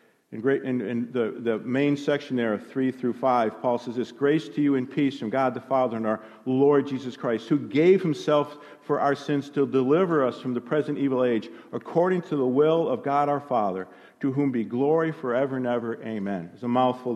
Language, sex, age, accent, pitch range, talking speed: English, male, 50-69, American, 130-170 Hz, 200 wpm